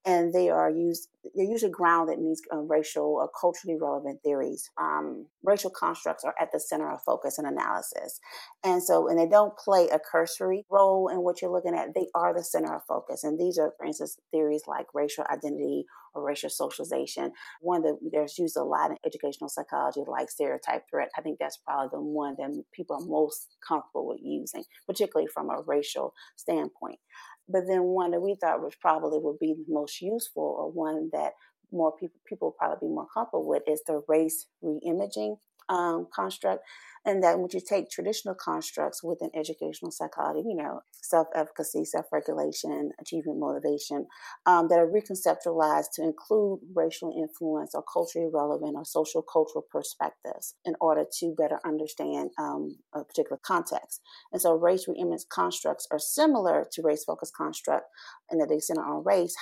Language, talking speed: English, 180 wpm